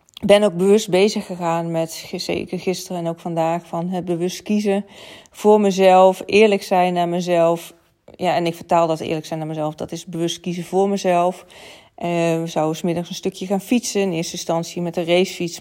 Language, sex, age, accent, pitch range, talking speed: Dutch, female, 40-59, Dutch, 170-185 Hz, 195 wpm